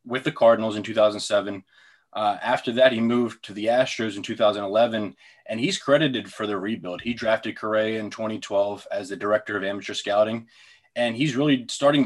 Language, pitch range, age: English, 110-140 Hz, 20-39